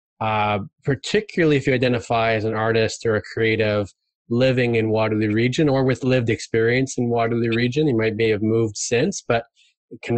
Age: 20-39